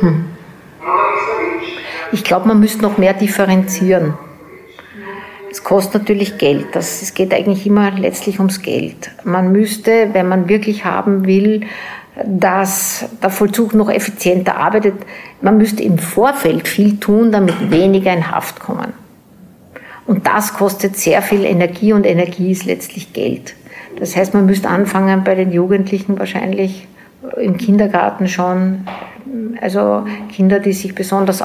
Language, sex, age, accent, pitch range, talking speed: German, female, 60-79, Austrian, 185-210 Hz, 135 wpm